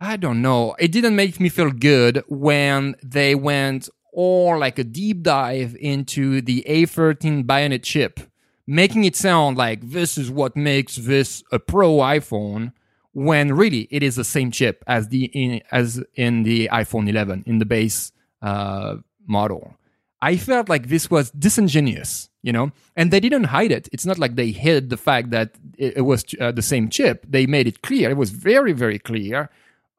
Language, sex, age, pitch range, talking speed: English, male, 30-49, 120-155 Hz, 180 wpm